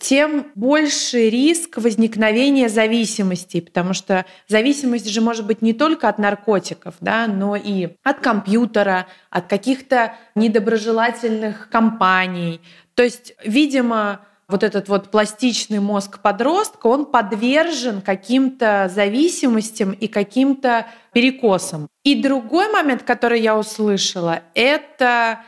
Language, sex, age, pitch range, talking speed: Russian, female, 20-39, 200-255 Hz, 110 wpm